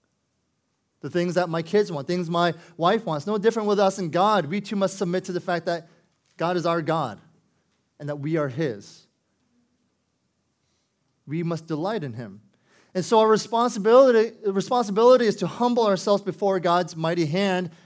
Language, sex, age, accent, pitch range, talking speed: English, male, 30-49, American, 175-210 Hz, 175 wpm